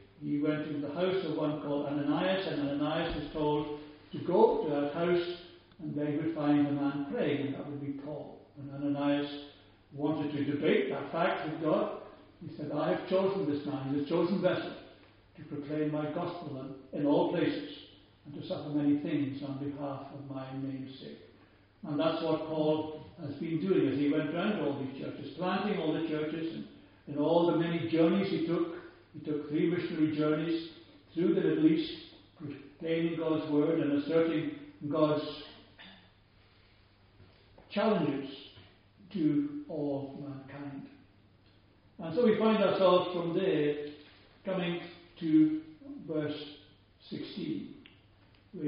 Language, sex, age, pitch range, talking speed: English, male, 60-79, 145-175 Hz, 155 wpm